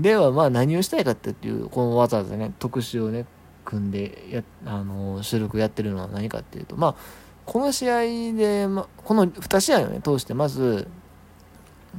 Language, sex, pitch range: Japanese, male, 95-160 Hz